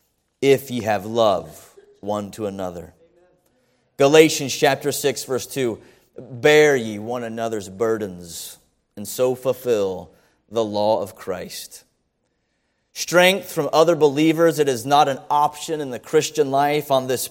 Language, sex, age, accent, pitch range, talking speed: English, male, 30-49, American, 135-195 Hz, 135 wpm